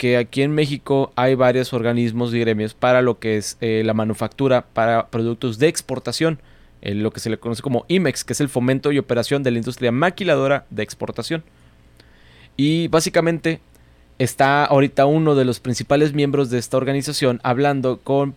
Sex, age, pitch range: male, 20-39, 115-145 Hz